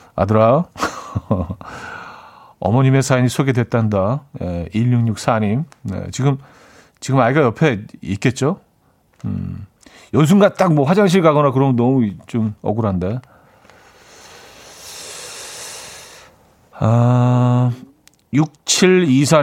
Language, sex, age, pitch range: Korean, male, 40-59, 110-155 Hz